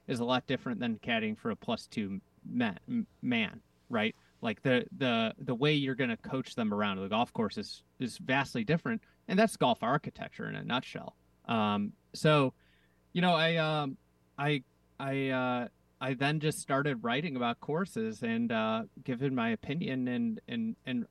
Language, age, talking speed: English, 30-49, 175 wpm